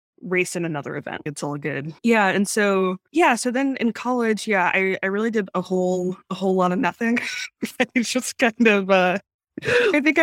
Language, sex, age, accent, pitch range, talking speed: English, female, 20-39, American, 160-220 Hz, 200 wpm